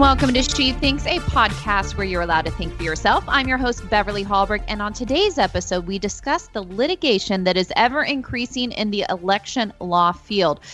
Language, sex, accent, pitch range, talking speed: English, female, American, 180-235 Hz, 195 wpm